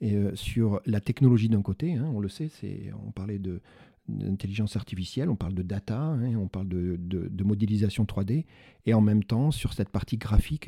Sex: male